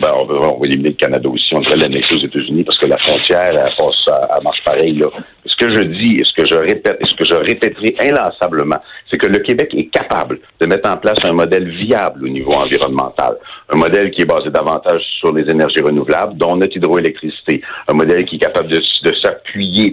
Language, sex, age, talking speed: French, male, 60-79, 220 wpm